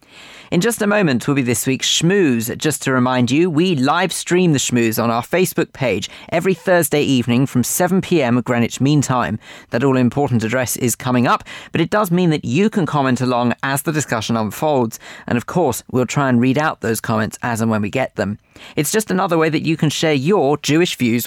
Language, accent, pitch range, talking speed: English, British, 120-170 Hz, 215 wpm